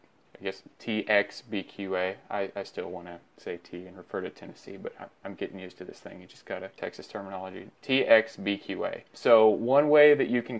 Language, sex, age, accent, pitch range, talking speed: English, male, 20-39, American, 100-115 Hz, 195 wpm